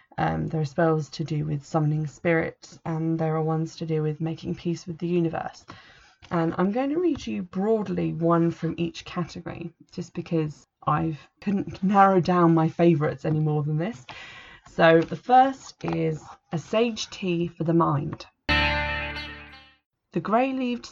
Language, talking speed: English, 160 wpm